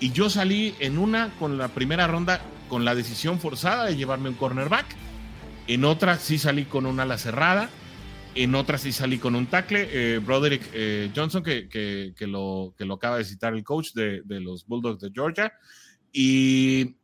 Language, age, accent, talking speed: English, 30-49, Mexican, 190 wpm